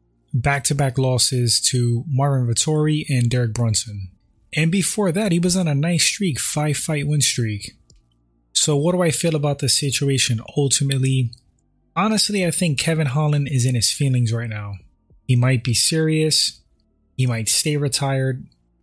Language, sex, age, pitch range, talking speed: English, male, 20-39, 115-140 Hz, 165 wpm